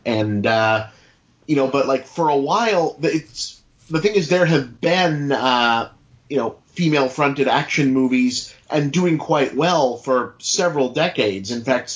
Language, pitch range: English, 115-130 Hz